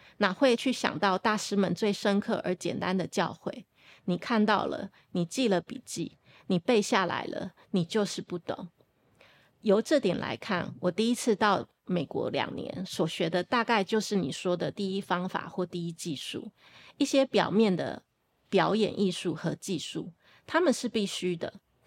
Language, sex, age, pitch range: Chinese, female, 20-39, 175-220 Hz